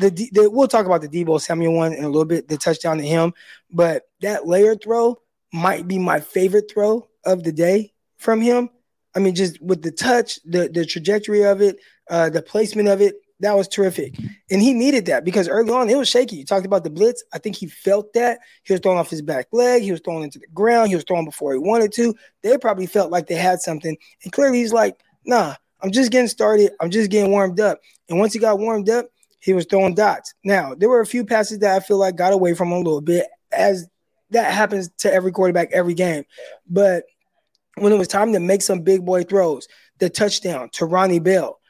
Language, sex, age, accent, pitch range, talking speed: English, male, 20-39, American, 170-210 Hz, 230 wpm